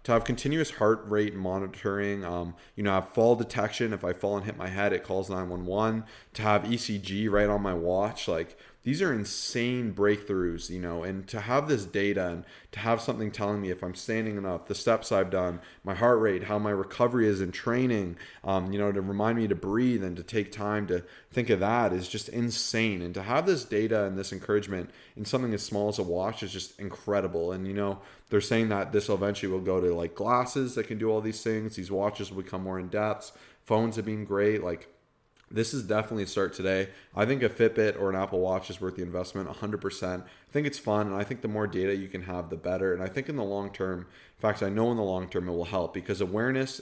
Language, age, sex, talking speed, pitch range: English, 20-39, male, 240 wpm, 95-110 Hz